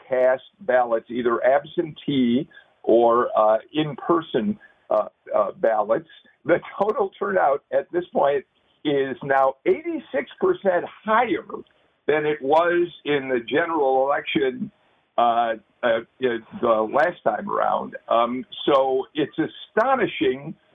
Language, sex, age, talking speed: English, male, 50-69, 105 wpm